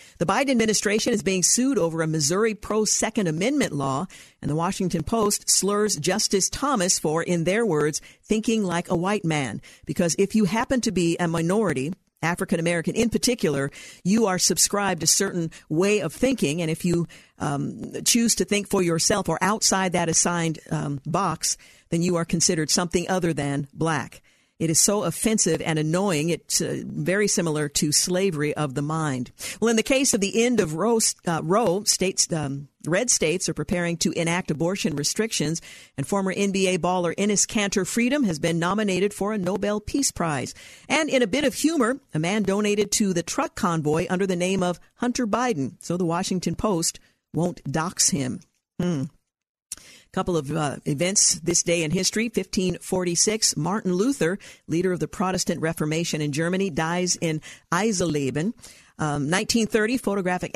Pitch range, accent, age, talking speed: 160-205 Hz, American, 50-69, 170 wpm